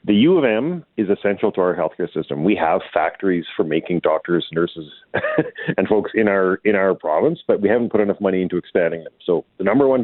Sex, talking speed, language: male, 215 wpm, English